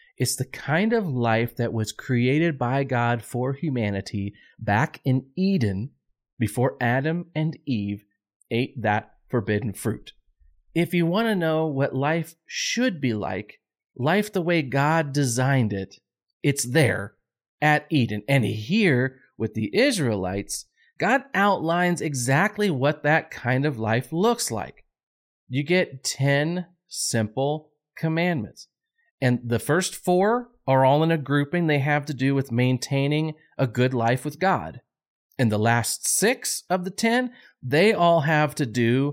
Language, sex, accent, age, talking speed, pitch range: English, male, American, 30-49, 145 wpm, 120-175 Hz